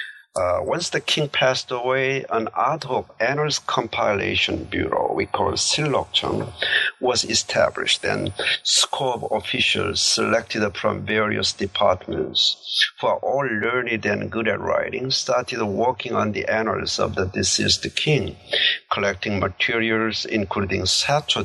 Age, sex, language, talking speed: 50-69, male, English, 130 wpm